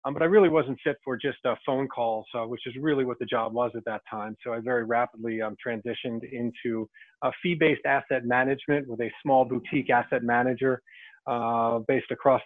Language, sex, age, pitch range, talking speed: English, male, 30-49, 120-140 Hz, 200 wpm